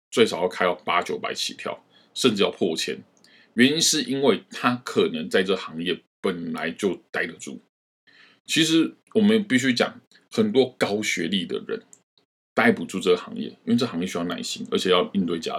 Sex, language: male, Chinese